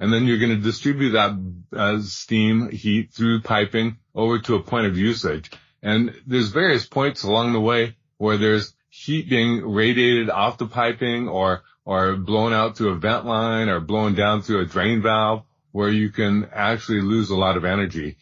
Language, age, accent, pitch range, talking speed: English, 30-49, American, 95-115 Hz, 190 wpm